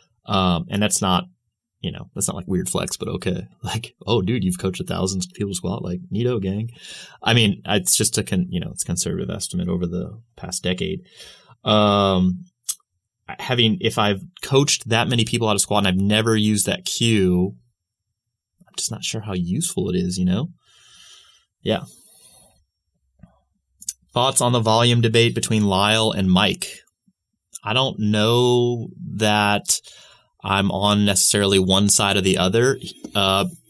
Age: 30-49